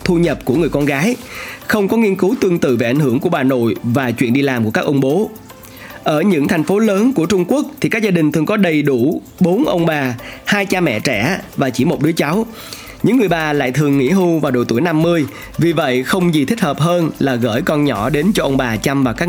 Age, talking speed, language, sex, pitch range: 20-39, 260 wpm, Vietnamese, male, 130-180 Hz